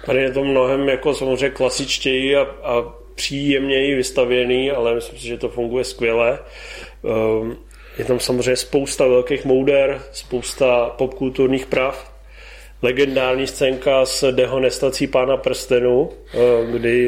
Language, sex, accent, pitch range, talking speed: Czech, male, native, 125-145 Hz, 120 wpm